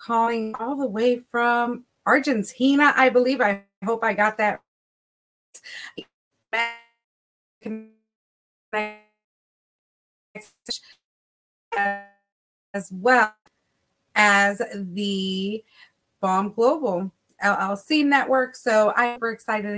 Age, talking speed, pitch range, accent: 30-49, 75 wpm, 195-235 Hz, American